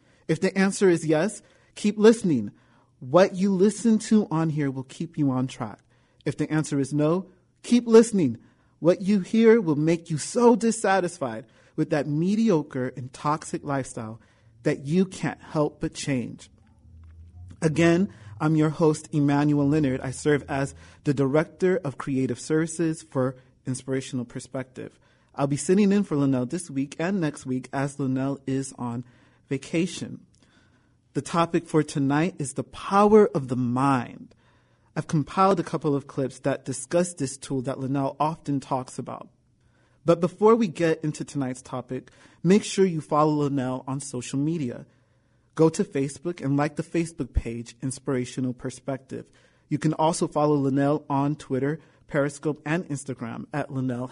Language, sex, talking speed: English, male, 155 wpm